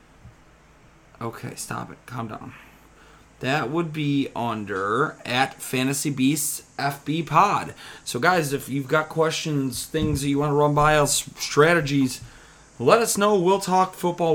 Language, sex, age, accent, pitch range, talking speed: English, male, 30-49, American, 130-165 Hz, 145 wpm